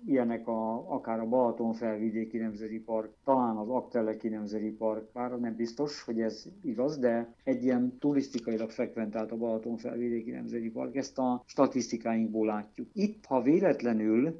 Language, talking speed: Hungarian, 140 wpm